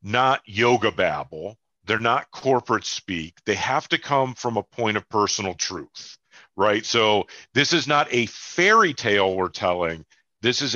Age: 40-59